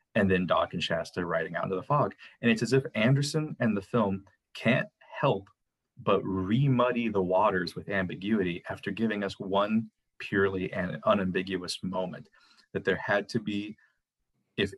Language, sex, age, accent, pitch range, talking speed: English, male, 30-49, American, 95-115 Hz, 160 wpm